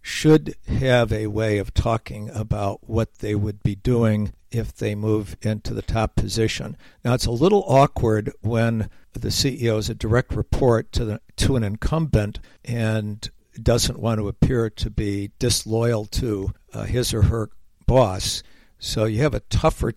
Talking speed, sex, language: 160 wpm, male, English